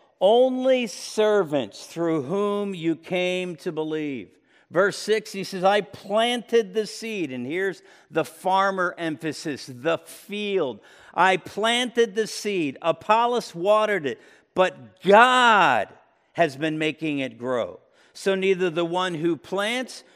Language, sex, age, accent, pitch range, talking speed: English, male, 50-69, American, 165-220 Hz, 130 wpm